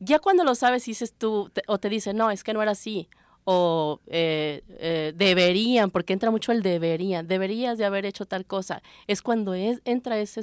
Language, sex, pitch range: Spanish, female, 185-225 Hz